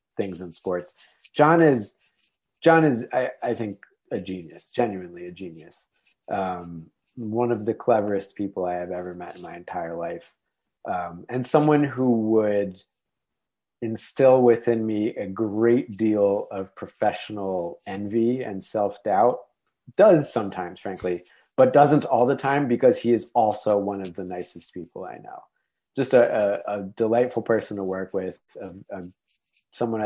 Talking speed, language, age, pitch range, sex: 150 wpm, English, 30-49, 90-115 Hz, male